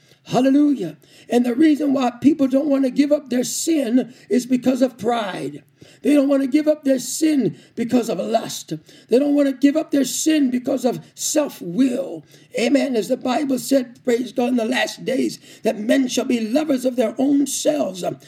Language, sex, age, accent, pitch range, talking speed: English, male, 50-69, American, 250-300 Hz, 190 wpm